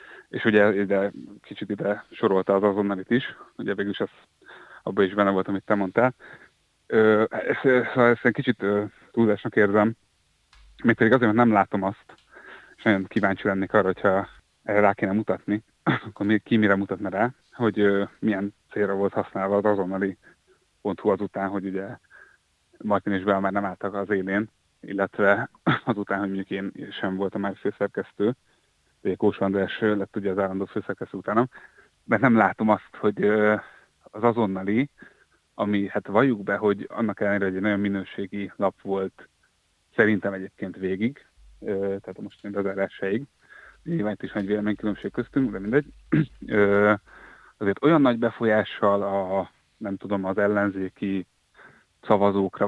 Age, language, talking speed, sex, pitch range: 30-49, Hungarian, 145 wpm, male, 95-105 Hz